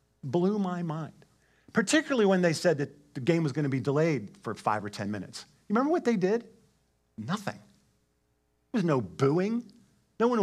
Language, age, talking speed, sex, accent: English, 50-69, 185 wpm, male, American